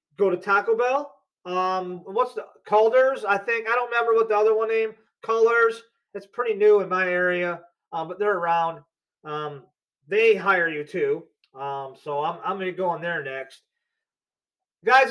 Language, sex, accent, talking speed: English, male, American, 180 wpm